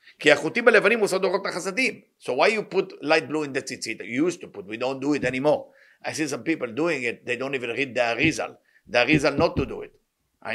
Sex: male